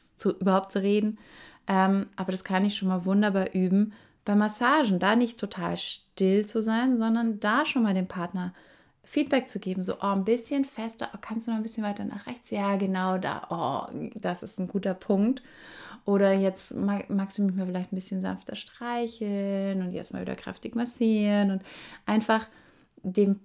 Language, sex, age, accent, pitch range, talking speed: German, female, 20-39, German, 185-225 Hz, 185 wpm